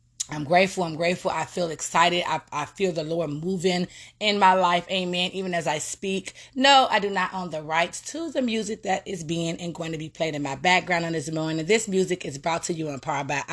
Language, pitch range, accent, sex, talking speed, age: English, 130-180 Hz, American, female, 240 wpm, 20-39